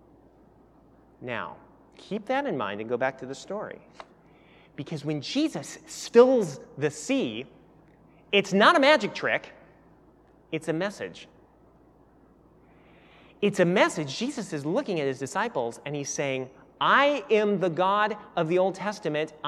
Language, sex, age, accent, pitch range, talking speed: English, male, 30-49, American, 160-235 Hz, 140 wpm